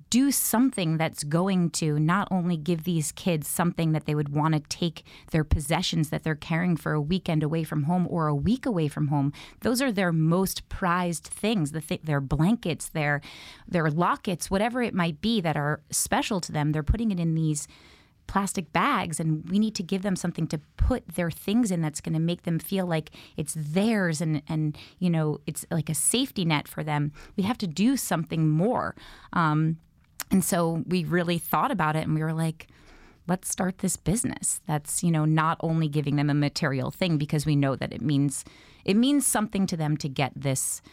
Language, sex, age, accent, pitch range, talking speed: English, female, 20-39, American, 145-180 Hz, 205 wpm